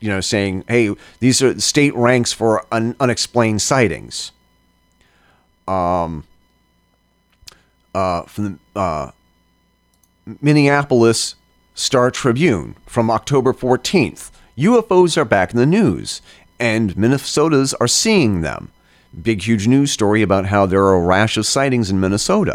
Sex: male